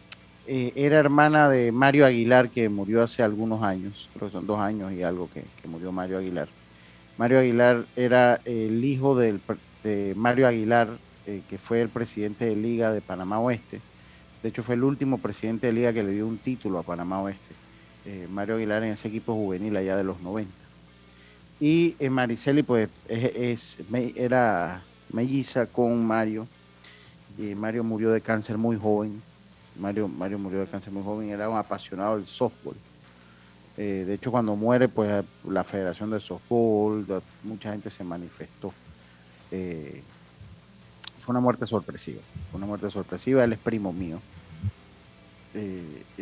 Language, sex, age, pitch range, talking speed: Spanish, male, 40-59, 90-120 Hz, 155 wpm